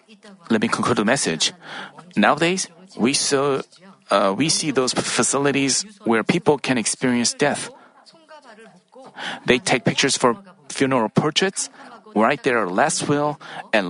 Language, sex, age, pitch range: Korean, male, 40-59, 130-195 Hz